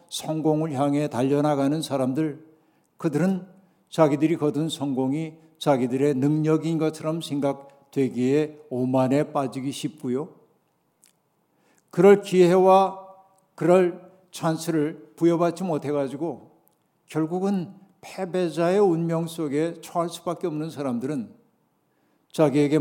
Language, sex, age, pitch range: Korean, male, 60-79, 145-175 Hz